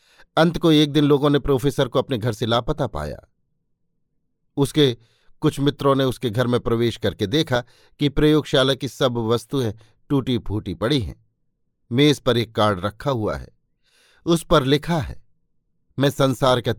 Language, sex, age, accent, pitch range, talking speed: Hindi, male, 50-69, native, 115-140 Hz, 165 wpm